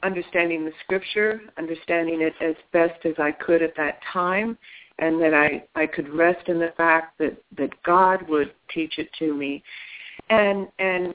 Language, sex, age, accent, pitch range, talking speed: English, female, 60-79, American, 160-185 Hz, 170 wpm